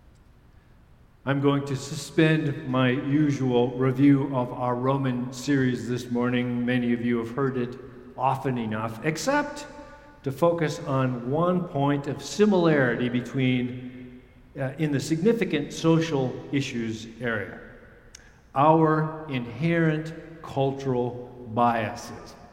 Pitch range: 125-160 Hz